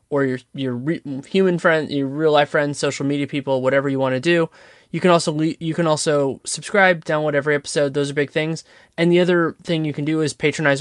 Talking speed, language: 235 wpm, English